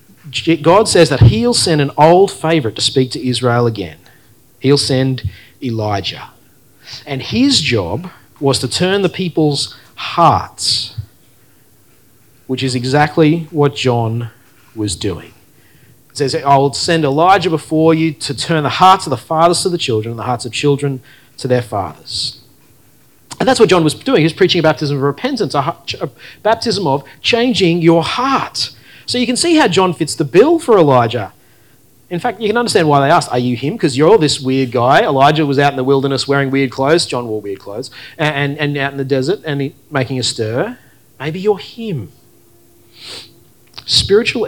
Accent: Australian